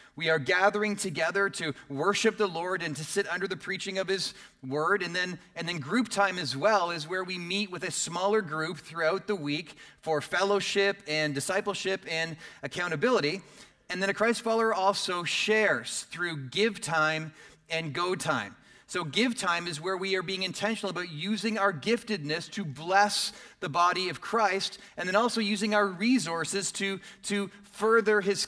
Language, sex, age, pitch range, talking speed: English, male, 30-49, 160-200 Hz, 175 wpm